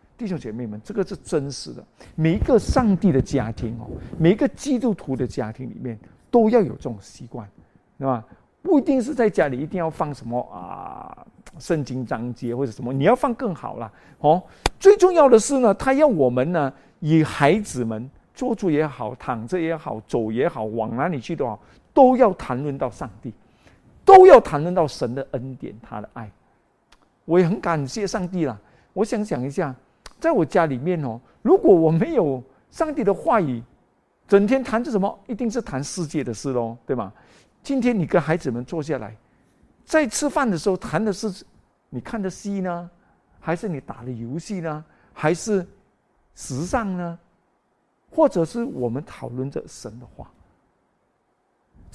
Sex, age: male, 50-69